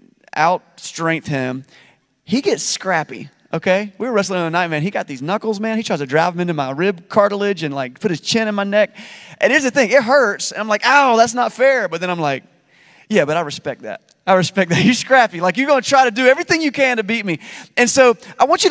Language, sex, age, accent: English, male, 30-49, American